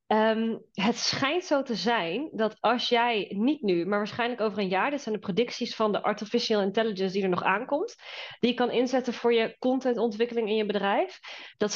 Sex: female